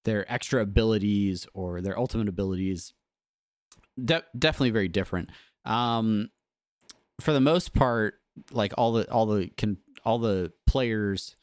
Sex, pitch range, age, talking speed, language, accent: male, 95-115 Hz, 30-49, 125 wpm, English, American